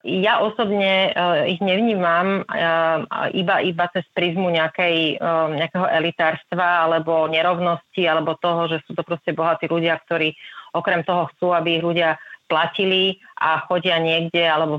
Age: 30-49